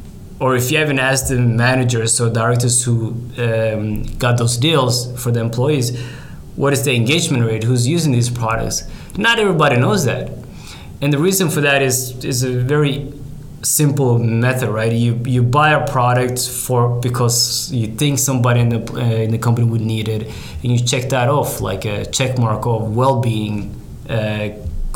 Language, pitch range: English, 115-135 Hz